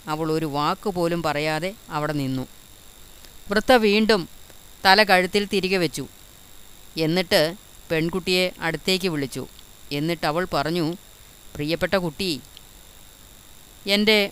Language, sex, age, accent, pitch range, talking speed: Malayalam, female, 30-49, native, 140-185 Hz, 95 wpm